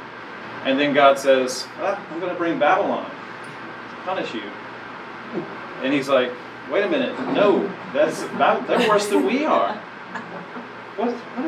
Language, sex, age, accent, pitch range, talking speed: English, male, 40-59, American, 125-170 Hz, 140 wpm